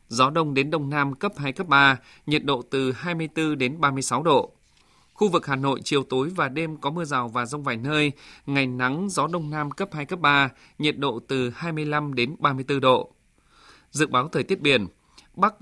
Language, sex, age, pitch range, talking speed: Vietnamese, male, 20-39, 135-160 Hz, 205 wpm